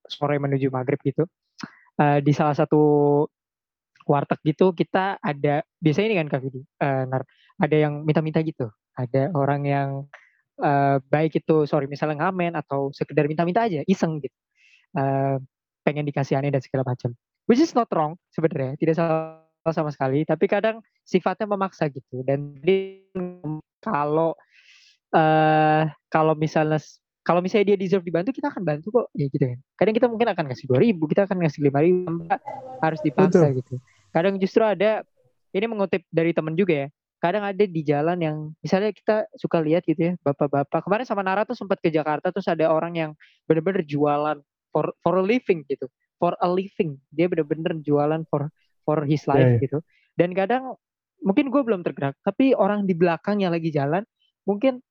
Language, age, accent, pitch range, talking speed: Indonesian, 20-39, native, 145-195 Hz, 165 wpm